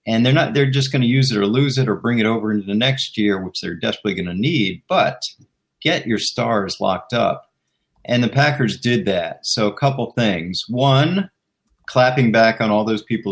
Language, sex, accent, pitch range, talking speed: English, male, American, 105-135 Hz, 215 wpm